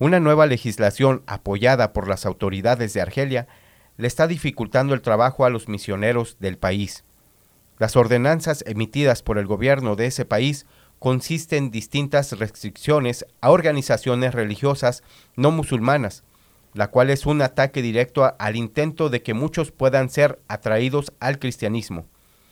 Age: 40-59